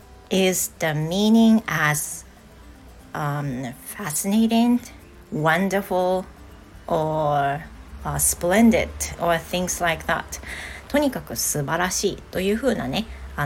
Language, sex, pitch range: Japanese, female, 160-200 Hz